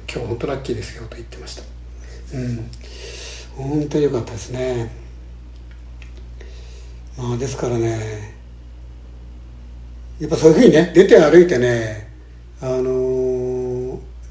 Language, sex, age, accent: Japanese, male, 60-79, native